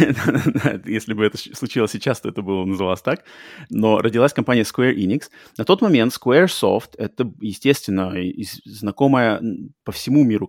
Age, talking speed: 30-49, 155 wpm